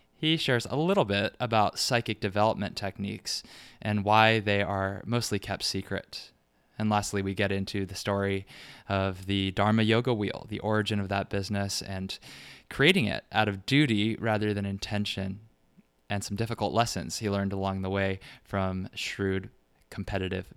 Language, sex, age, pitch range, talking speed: English, male, 20-39, 100-110 Hz, 160 wpm